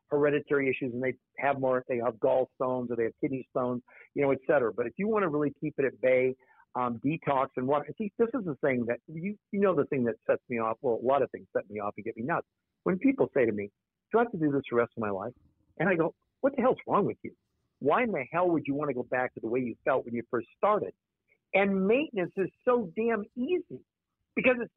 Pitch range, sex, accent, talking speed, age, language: 135-195 Hz, male, American, 270 wpm, 50-69, English